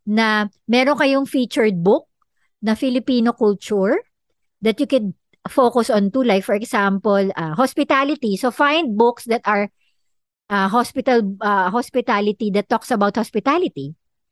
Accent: Filipino